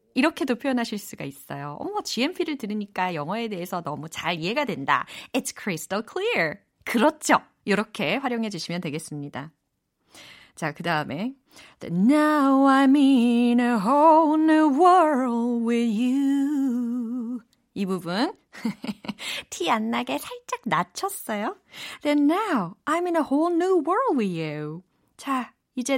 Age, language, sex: 30-49, Korean, female